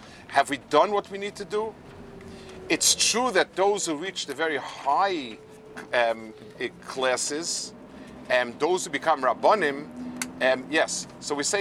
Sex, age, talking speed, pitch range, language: male, 50-69, 150 wpm, 140-200 Hz, English